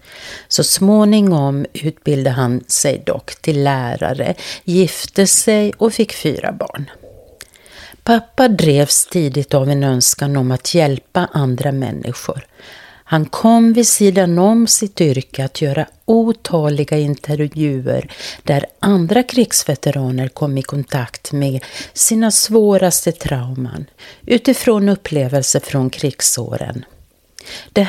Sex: female